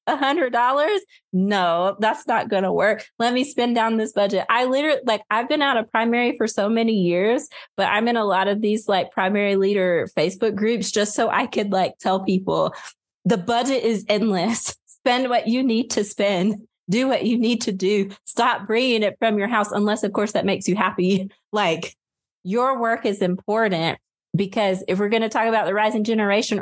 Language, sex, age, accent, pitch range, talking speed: English, female, 20-39, American, 190-230 Hz, 195 wpm